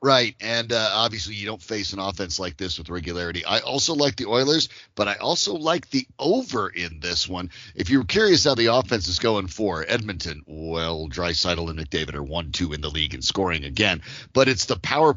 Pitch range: 90-120 Hz